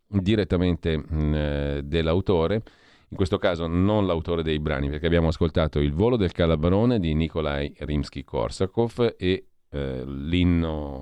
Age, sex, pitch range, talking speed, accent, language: 40-59, male, 75-100 Hz, 125 wpm, native, Italian